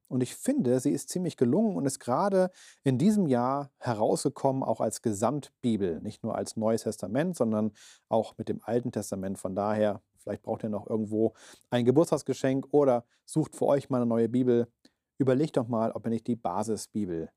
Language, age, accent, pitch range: German, 40-59, German, 115-165 Hz